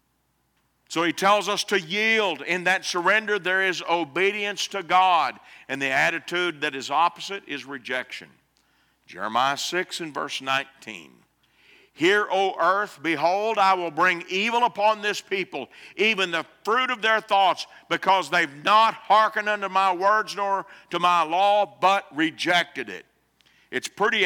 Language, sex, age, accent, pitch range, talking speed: English, male, 50-69, American, 135-200 Hz, 150 wpm